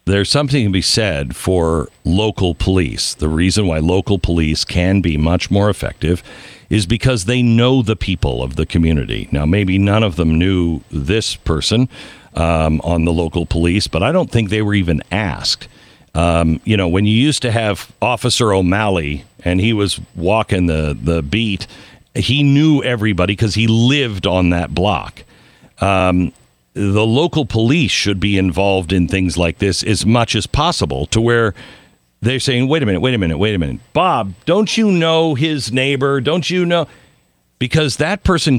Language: English